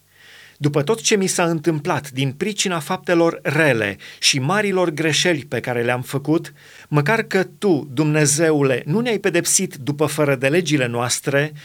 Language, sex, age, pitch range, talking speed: Romanian, male, 30-49, 150-195 Hz, 150 wpm